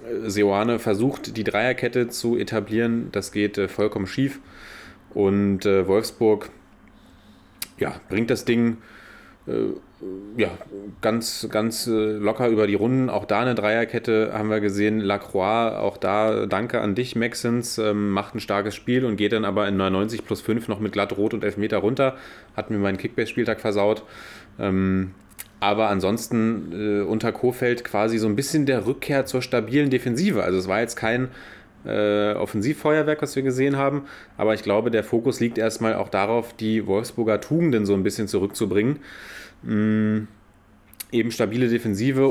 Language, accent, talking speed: German, German, 160 wpm